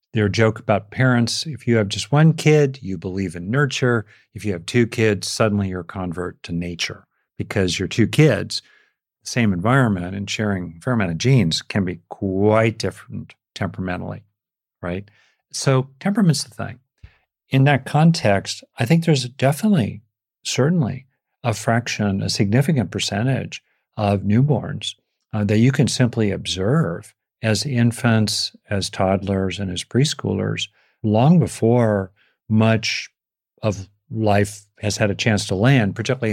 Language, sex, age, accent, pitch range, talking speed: English, male, 50-69, American, 100-130 Hz, 145 wpm